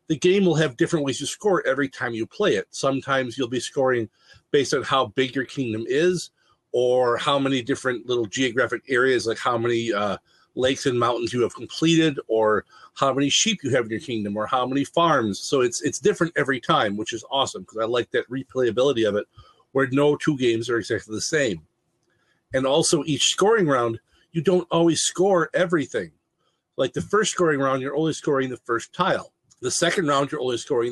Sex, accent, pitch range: male, American, 120-170 Hz